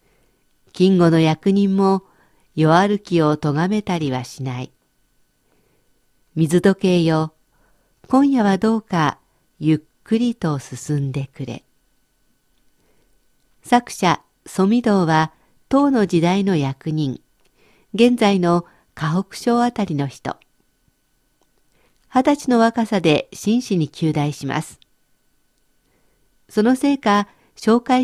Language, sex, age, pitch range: Japanese, female, 50-69, 160-235 Hz